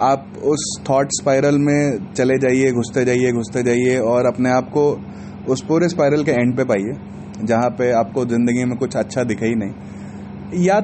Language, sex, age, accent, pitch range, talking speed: Hindi, male, 30-49, native, 125-190 Hz, 175 wpm